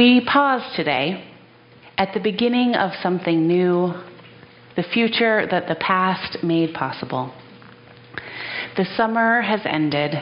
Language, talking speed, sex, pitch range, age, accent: English, 115 wpm, female, 160-200 Hz, 30-49, American